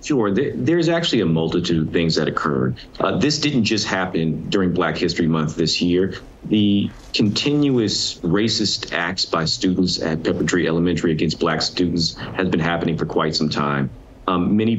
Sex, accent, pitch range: male, American, 85-115 Hz